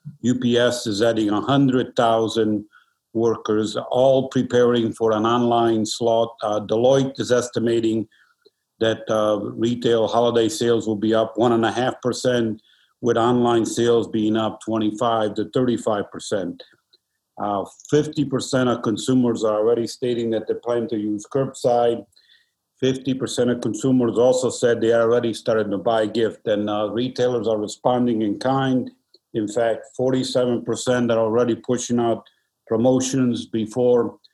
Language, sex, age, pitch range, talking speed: English, male, 50-69, 110-125 Hz, 125 wpm